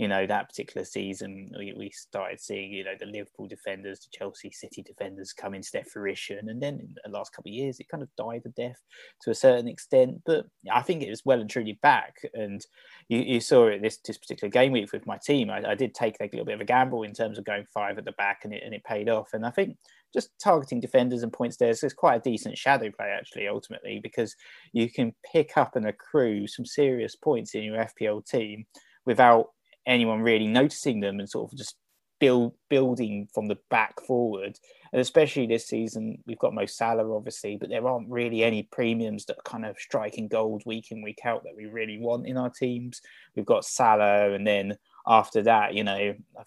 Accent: British